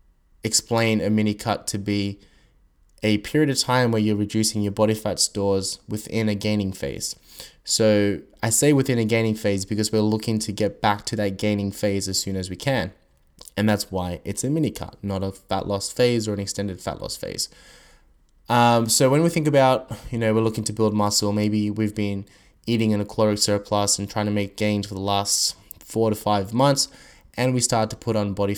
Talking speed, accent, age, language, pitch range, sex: 210 wpm, Australian, 20-39, English, 100-115 Hz, male